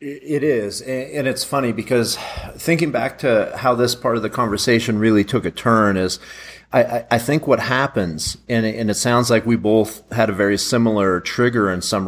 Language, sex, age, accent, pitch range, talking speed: English, male, 40-59, American, 95-120 Hz, 190 wpm